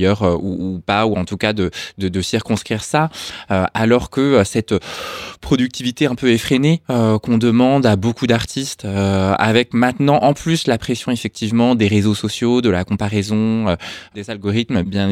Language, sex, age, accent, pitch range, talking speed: French, male, 20-39, French, 95-125 Hz, 175 wpm